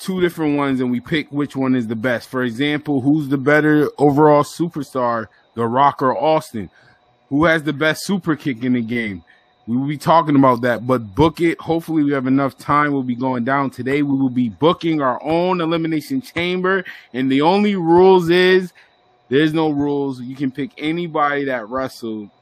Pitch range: 130-190 Hz